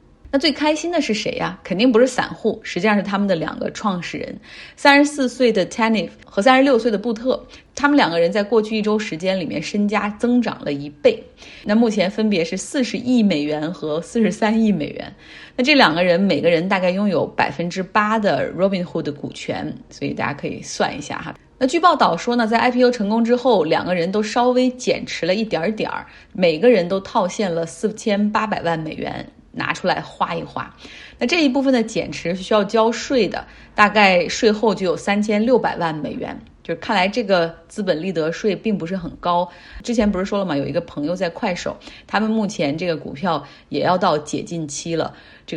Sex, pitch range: female, 175-230 Hz